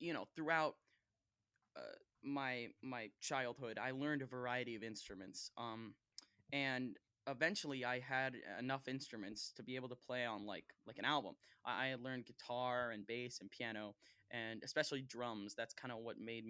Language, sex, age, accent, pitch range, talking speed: English, male, 10-29, American, 115-135 Hz, 165 wpm